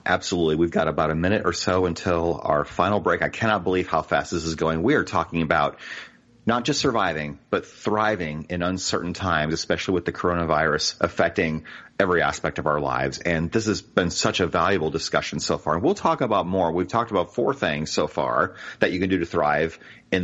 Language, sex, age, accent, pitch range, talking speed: English, male, 30-49, American, 80-105 Hz, 210 wpm